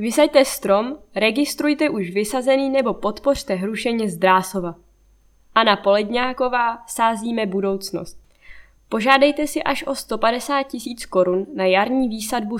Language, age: Czech, 20-39